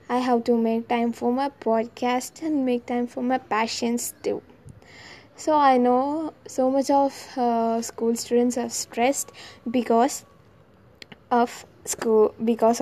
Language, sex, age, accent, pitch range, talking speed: Tamil, female, 20-39, native, 225-245 Hz, 140 wpm